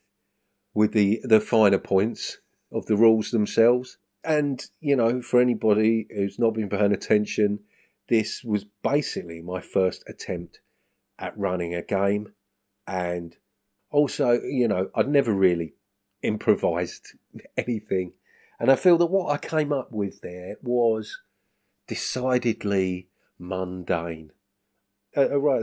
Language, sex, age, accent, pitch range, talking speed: English, male, 40-59, British, 95-120 Hz, 120 wpm